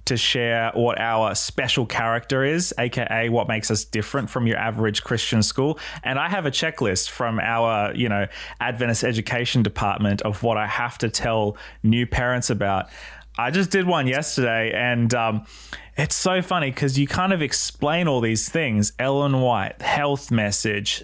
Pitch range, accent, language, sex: 110-150 Hz, Australian, English, male